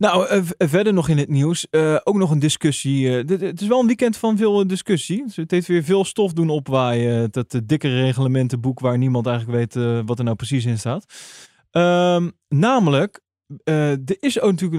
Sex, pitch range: male, 125-175 Hz